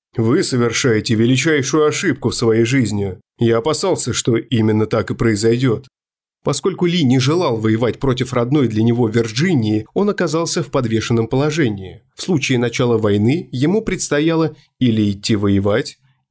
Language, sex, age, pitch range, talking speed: Russian, male, 20-39, 110-150 Hz, 140 wpm